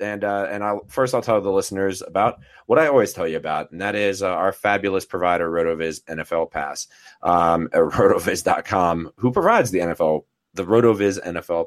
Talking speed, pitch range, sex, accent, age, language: 185 wpm, 90-120 Hz, male, American, 30-49, English